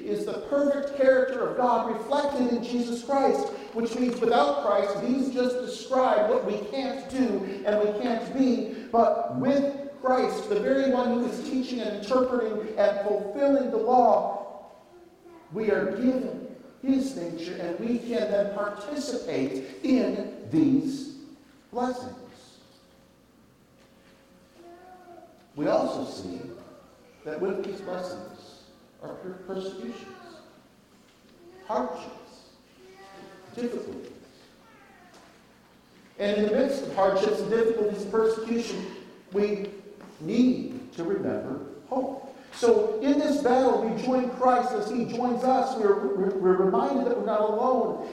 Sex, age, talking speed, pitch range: male, 50-69, 120 wpm, 205-260 Hz